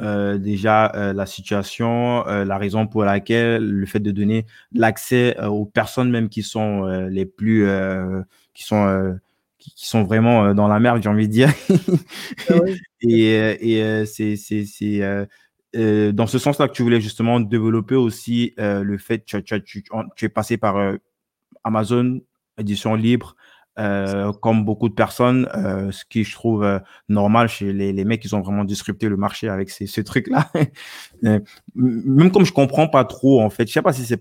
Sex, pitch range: male, 100-120 Hz